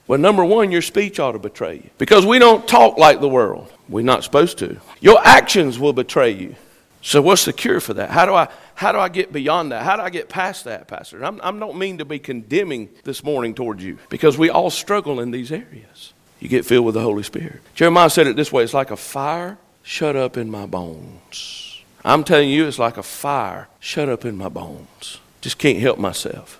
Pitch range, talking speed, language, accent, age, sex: 110-165 Hz, 230 wpm, English, American, 50-69, male